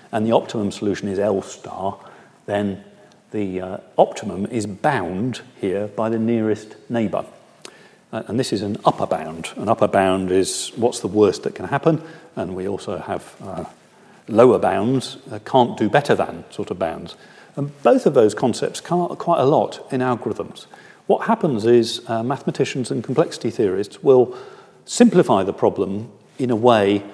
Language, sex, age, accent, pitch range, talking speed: English, male, 40-59, British, 105-150 Hz, 160 wpm